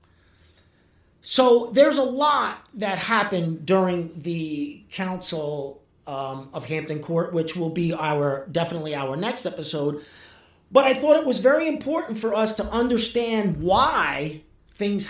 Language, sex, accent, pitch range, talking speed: English, male, American, 130-210 Hz, 135 wpm